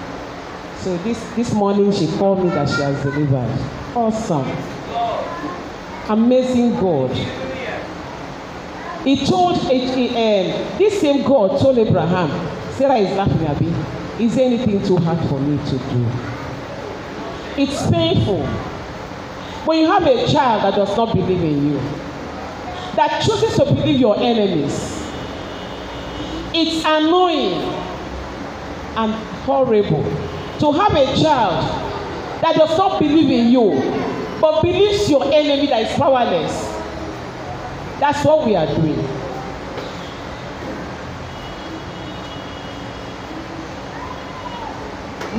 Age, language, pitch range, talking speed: 40-59, English, 175-285 Hz, 110 wpm